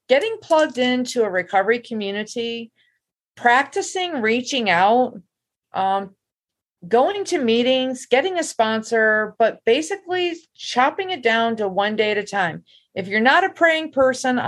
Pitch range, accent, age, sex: 200-270 Hz, American, 40-59, female